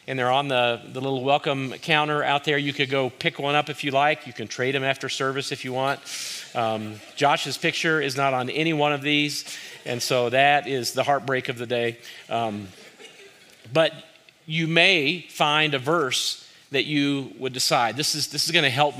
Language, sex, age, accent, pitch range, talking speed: English, male, 40-59, American, 125-155 Hz, 200 wpm